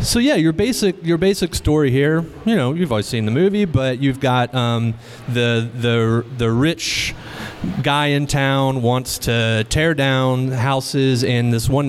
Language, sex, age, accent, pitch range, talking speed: English, male, 30-49, American, 110-130 Hz, 170 wpm